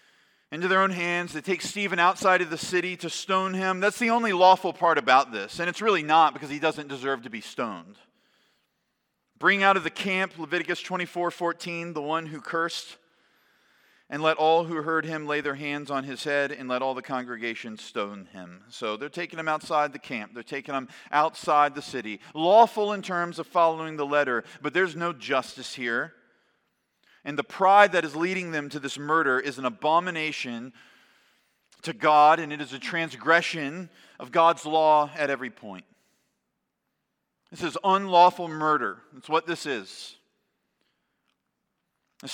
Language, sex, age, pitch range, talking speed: English, male, 40-59, 150-190 Hz, 175 wpm